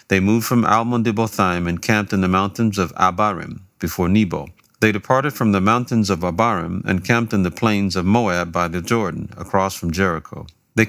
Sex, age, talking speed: male, 40-59, 185 wpm